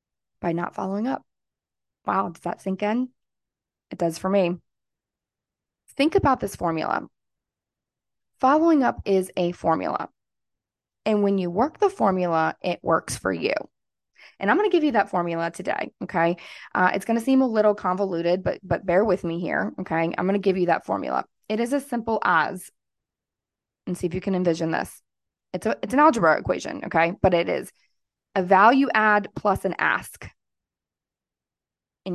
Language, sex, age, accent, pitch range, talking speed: English, female, 20-39, American, 175-210 Hz, 175 wpm